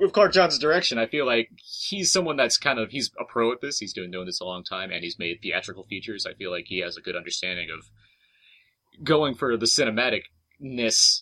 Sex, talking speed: male, 225 wpm